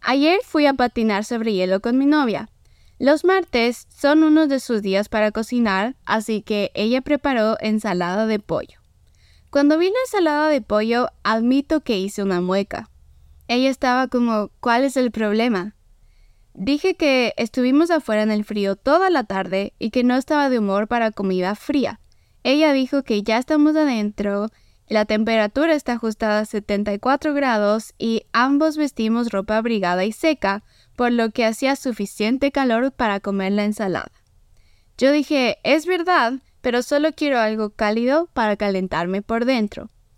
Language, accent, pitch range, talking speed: Spanish, Mexican, 210-275 Hz, 155 wpm